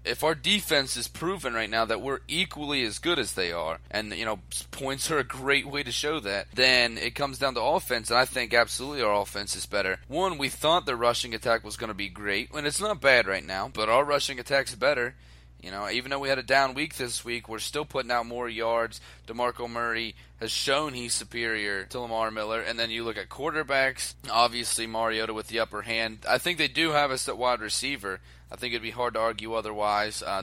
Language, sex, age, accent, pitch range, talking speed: English, male, 30-49, American, 105-135 Hz, 235 wpm